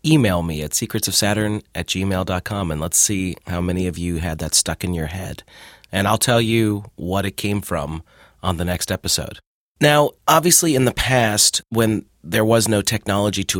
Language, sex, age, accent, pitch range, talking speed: English, male, 30-49, American, 90-115 Hz, 185 wpm